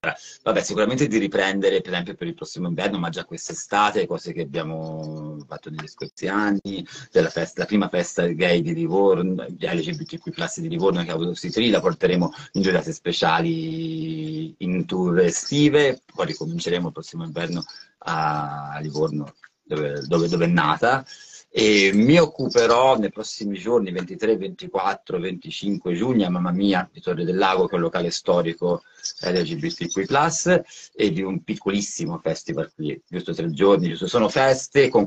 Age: 40-59